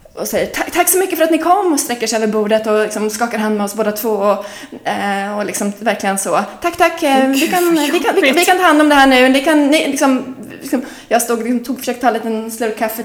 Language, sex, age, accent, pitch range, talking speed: English, female, 20-39, Swedish, 195-265 Hz, 260 wpm